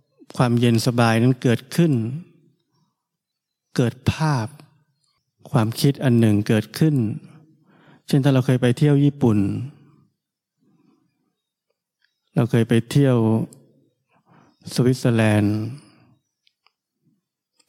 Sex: male